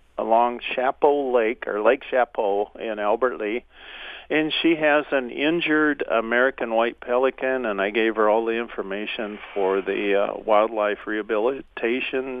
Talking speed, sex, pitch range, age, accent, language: 140 wpm, male, 115-155 Hz, 50-69, American, English